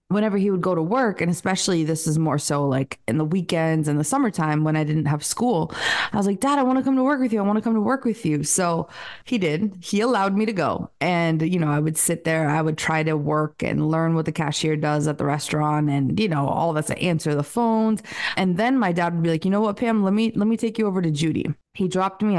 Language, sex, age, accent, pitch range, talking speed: English, female, 20-39, American, 155-185 Hz, 280 wpm